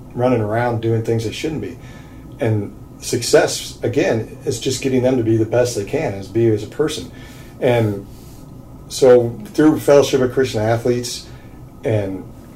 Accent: American